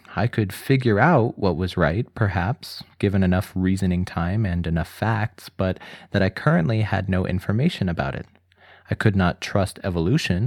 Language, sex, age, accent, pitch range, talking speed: English, male, 20-39, American, 90-115 Hz, 165 wpm